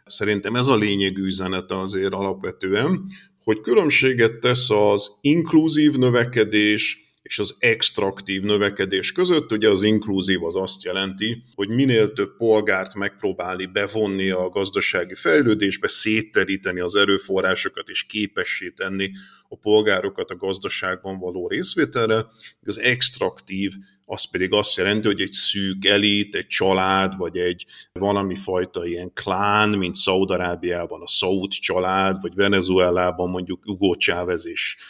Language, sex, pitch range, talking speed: Hungarian, male, 95-105 Hz, 120 wpm